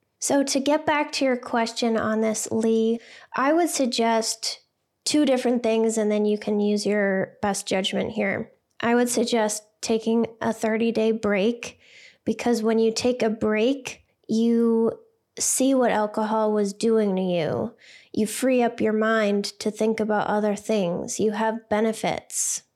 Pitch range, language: 210-235 Hz, English